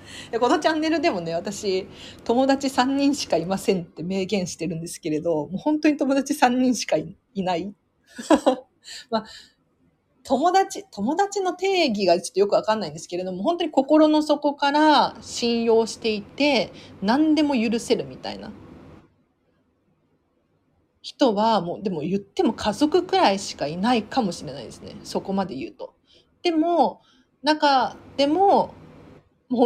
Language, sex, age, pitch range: Japanese, female, 40-59, 200-305 Hz